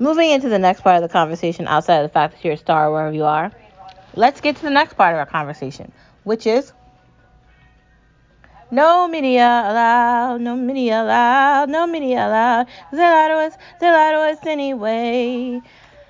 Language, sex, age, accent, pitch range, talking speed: English, female, 30-49, American, 175-255 Hz, 175 wpm